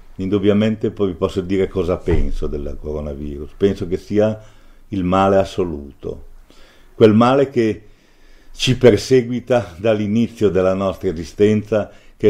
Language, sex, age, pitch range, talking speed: Italian, male, 50-69, 90-110 Hz, 120 wpm